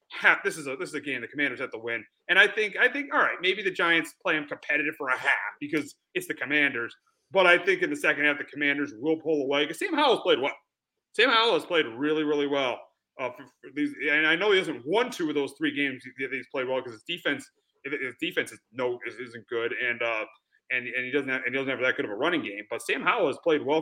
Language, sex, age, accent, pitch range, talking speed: English, male, 30-49, American, 135-175 Hz, 270 wpm